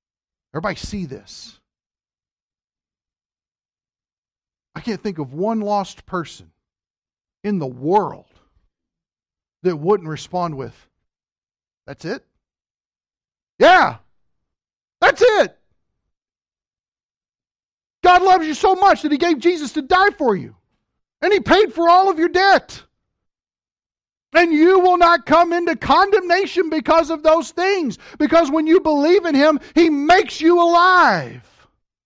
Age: 50-69